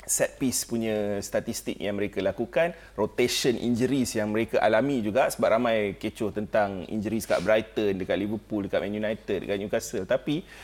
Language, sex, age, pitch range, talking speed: Malay, male, 30-49, 120-185 Hz, 160 wpm